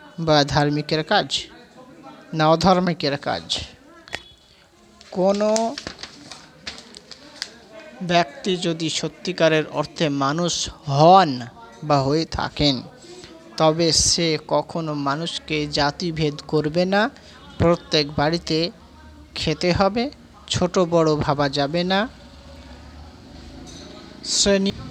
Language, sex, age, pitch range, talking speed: Bengali, male, 50-69, 140-180 Hz, 65 wpm